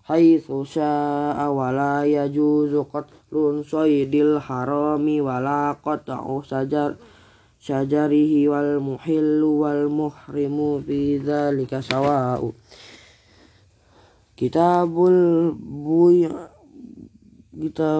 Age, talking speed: 20-39, 65 wpm